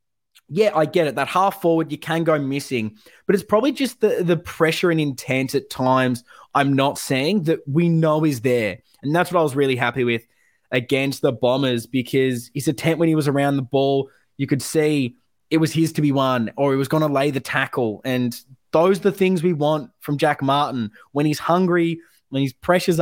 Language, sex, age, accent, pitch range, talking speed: English, male, 20-39, Australian, 135-165 Hz, 215 wpm